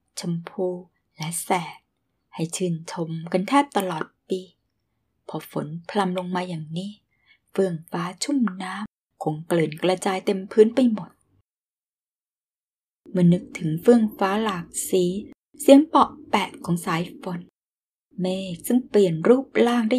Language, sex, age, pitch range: Thai, female, 20-39, 170-210 Hz